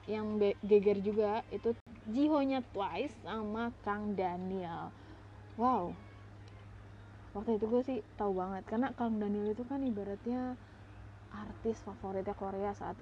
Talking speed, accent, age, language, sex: 130 wpm, native, 20-39, Indonesian, female